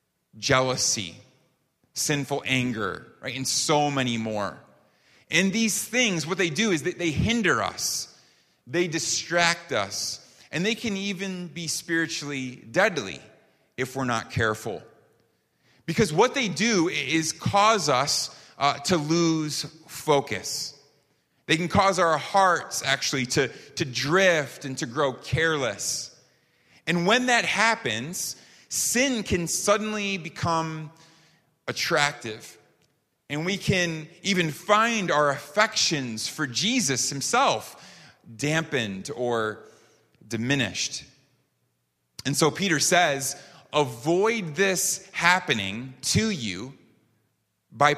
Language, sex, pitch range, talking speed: English, male, 130-175 Hz, 110 wpm